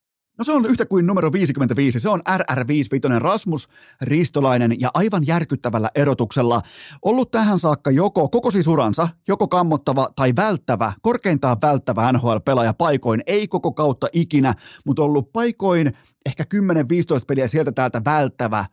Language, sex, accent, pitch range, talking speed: Finnish, male, native, 125-170 Hz, 140 wpm